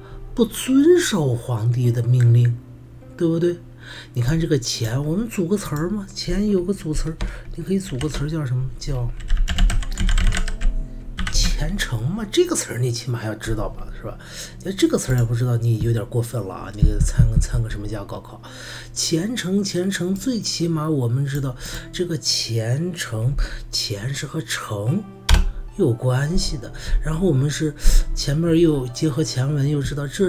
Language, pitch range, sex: Chinese, 120-170 Hz, male